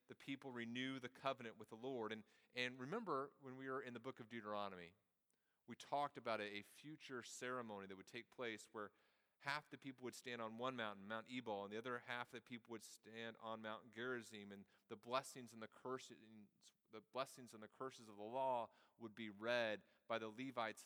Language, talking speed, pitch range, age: English, 205 wpm, 105-125 Hz, 30-49